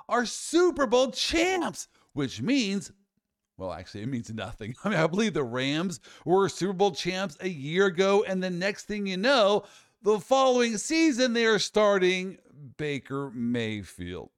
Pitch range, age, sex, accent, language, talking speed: 140-210 Hz, 50-69, male, American, English, 160 wpm